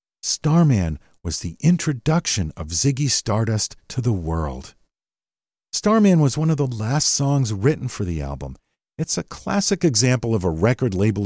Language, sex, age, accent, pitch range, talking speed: English, male, 50-69, American, 90-135 Hz, 155 wpm